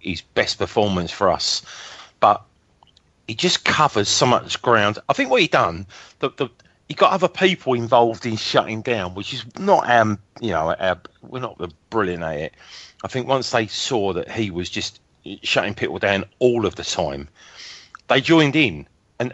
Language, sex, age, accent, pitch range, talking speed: English, male, 40-59, British, 95-140 Hz, 175 wpm